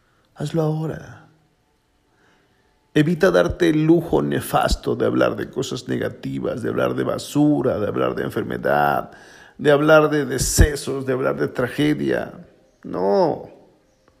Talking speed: 125 wpm